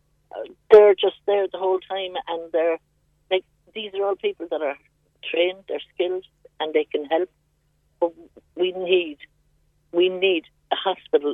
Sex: female